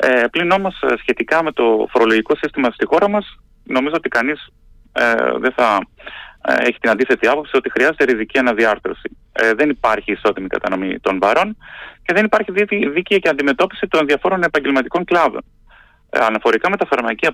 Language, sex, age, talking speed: Greek, male, 30-49, 165 wpm